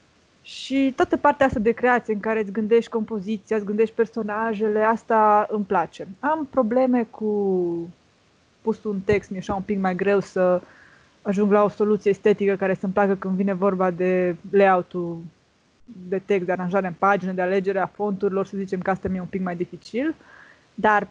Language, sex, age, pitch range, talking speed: Romanian, female, 20-39, 190-220 Hz, 175 wpm